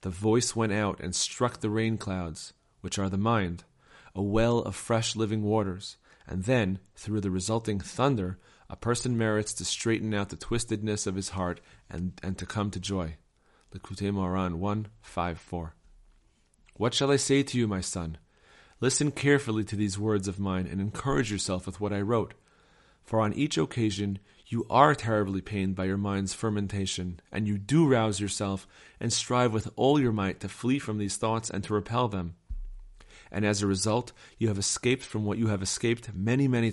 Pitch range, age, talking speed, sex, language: 95-115 Hz, 40-59, 185 wpm, male, English